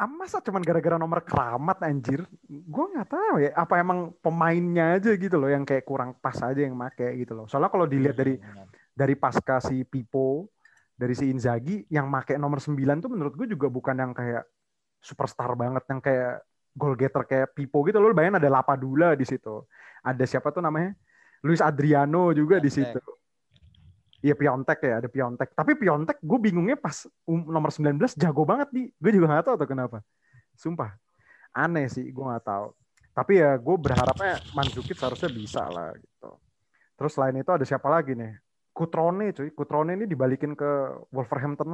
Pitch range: 130-165 Hz